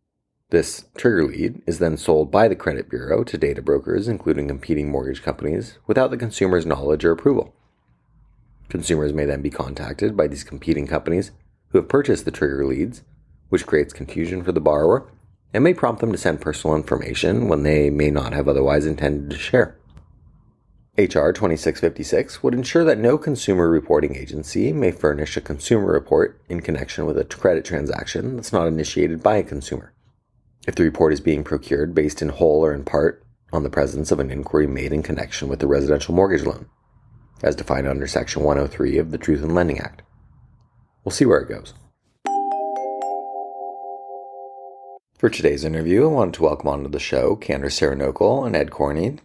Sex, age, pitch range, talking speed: male, 30-49, 75-90 Hz, 175 wpm